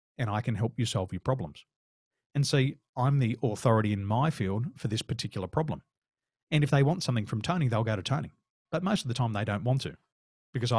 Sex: male